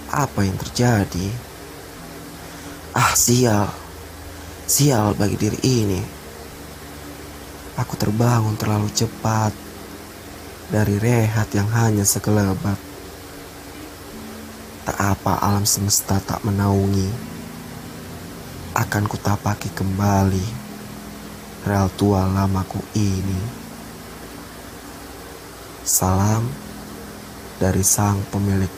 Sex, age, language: male, 20-39, Indonesian